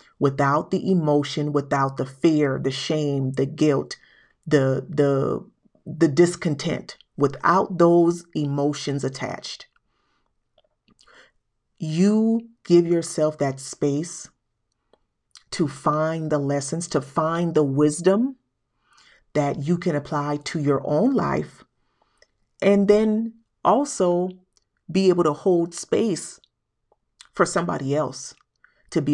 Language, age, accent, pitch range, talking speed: English, 40-59, American, 140-170 Hz, 105 wpm